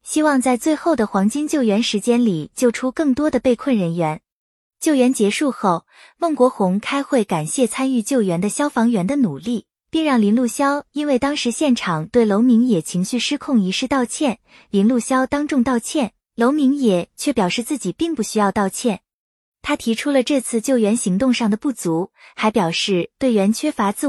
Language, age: Chinese, 20-39